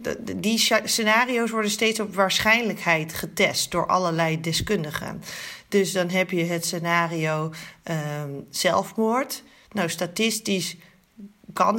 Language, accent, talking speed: Dutch, Dutch, 100 wpm